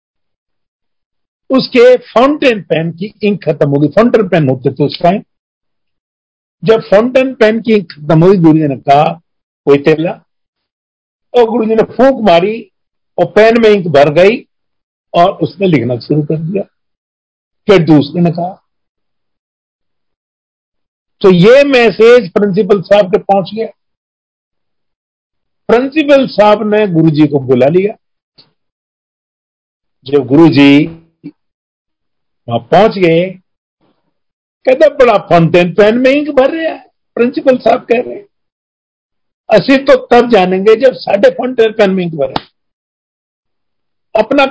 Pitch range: 160-230 Hz